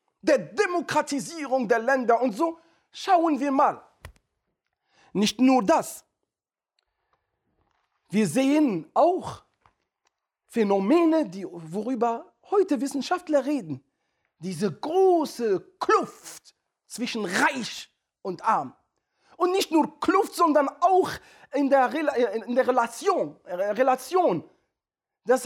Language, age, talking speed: German, 50-69, 90 wpm